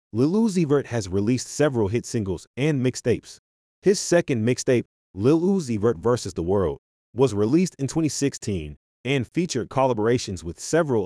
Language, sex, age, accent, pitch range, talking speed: English, male, 30-49, American, 100-145 Hz, 150 wpm